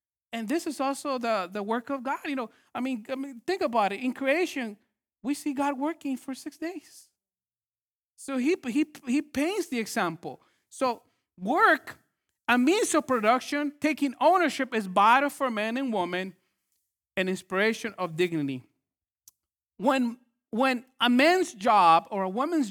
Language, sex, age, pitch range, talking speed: English, male, 40-59, 210-270 Hz, 160 wpm